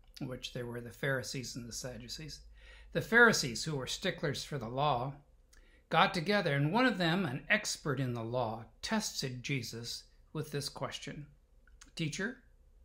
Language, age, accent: English, 60-79, American